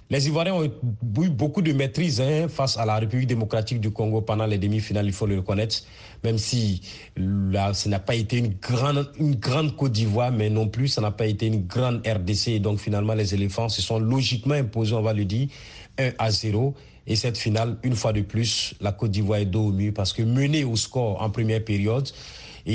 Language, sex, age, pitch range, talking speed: French, male, 40-59, 105-130 Hz, 220 wpm